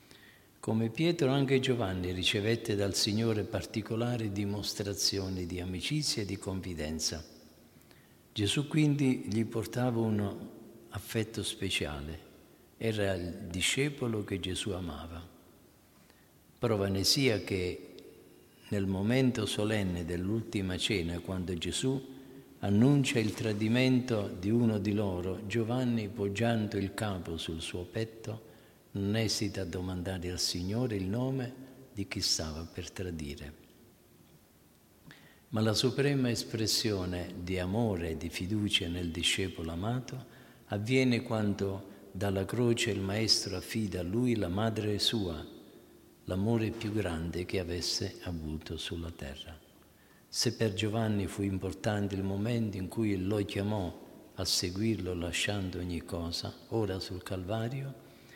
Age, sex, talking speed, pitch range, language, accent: 50-69, male, 120 wpm, 90-115 Hz, Italian, native